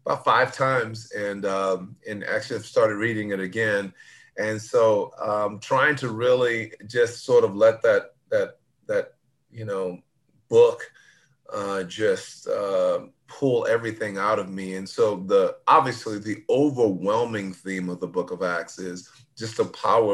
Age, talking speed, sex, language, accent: 30-49, 155 wpm, male, English, American